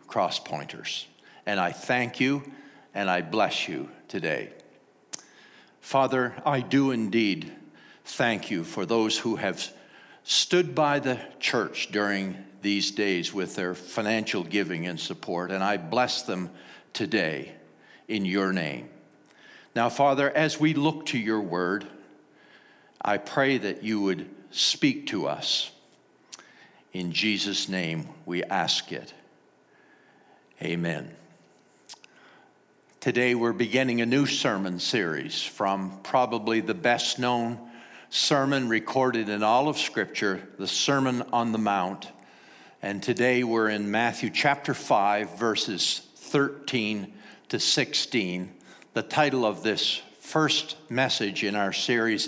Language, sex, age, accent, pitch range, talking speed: English, male, 60-79, American, 100-130 Hz, 125 wpm